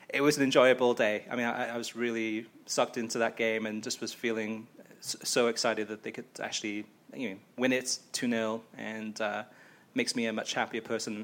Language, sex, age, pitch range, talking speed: English, male, 30-49, 110-135 Hz, 210 wpm